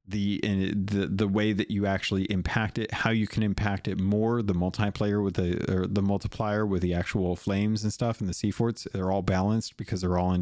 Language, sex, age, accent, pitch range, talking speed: English, male, 30-49, American, 90-105 Hz, 225 wpm